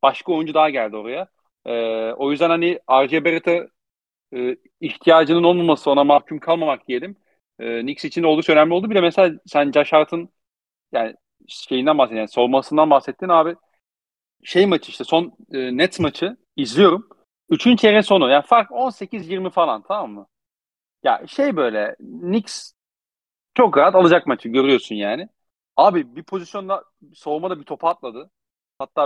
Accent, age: native, 40-59